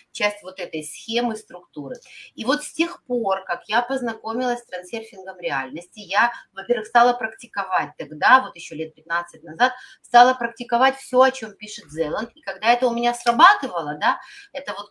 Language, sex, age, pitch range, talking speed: Russian, female, 30-49, 185-260 Hz, 170 wpm